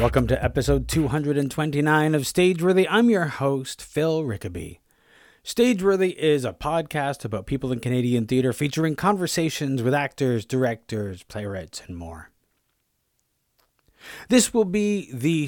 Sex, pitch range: male, 110-150 Hz